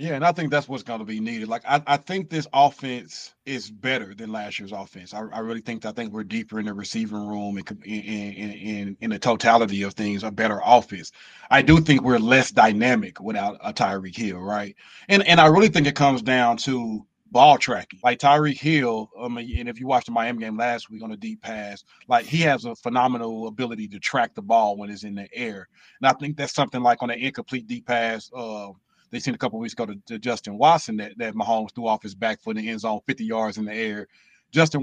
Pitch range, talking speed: 110-140 Hz, 245 wpm